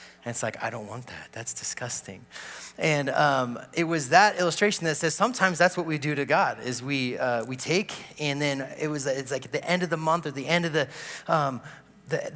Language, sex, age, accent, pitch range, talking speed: English, male, 30-49, American, 120-160 Hz, 235 wpm